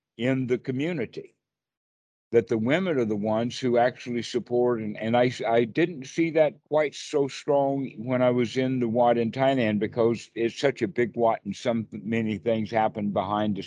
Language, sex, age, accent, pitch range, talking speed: English, male, 60-79, American, 115-140 Hz, 190 wpm